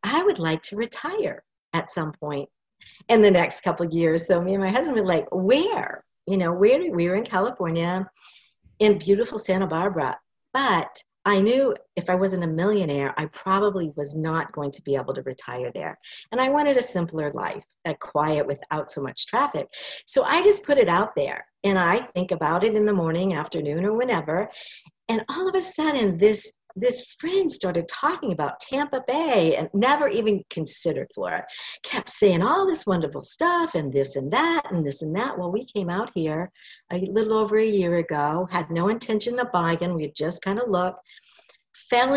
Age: 50-69